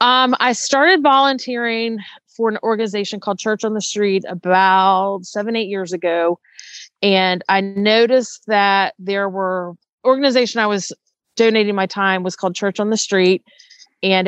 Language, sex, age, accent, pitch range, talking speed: English, female, 30-49, American, 190-225 Hz, 150 wpm